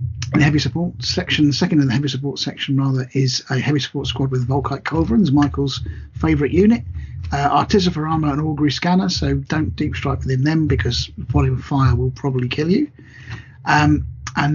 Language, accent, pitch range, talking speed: English, British, 130-155 Hz, 185 wpm